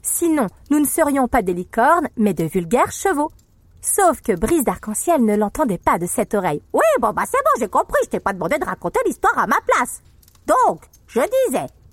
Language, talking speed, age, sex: French, 205 wpm, 50-69, female